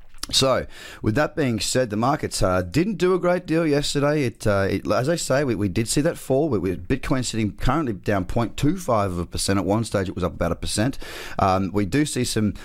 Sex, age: male, 30-49